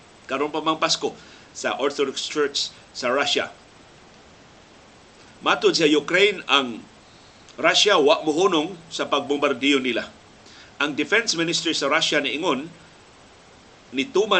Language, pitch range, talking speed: Filipino, 145-180 Hz, 100 wpm